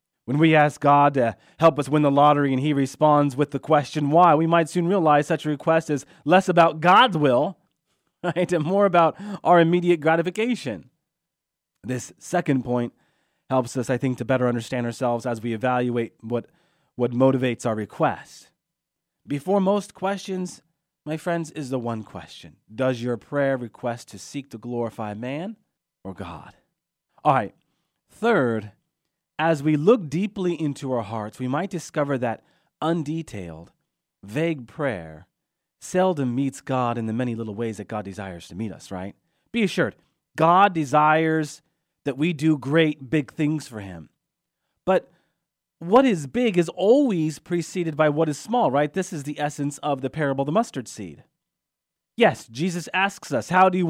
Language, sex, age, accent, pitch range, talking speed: English, male, 30-49, American, 125-170 Hz, 165 wpm